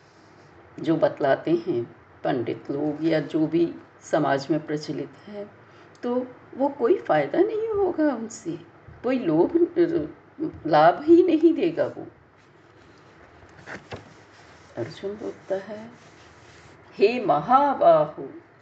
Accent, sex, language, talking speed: native, female, Hindi, 95 wpm